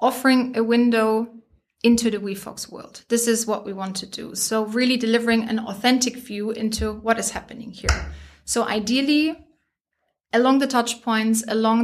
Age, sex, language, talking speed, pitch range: 20-39, female, English, 160 wpm, 215-240 Hz